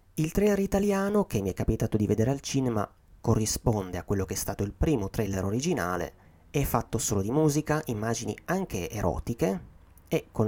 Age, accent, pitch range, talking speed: 30-49, native, 90-115 Hz, 180 wpm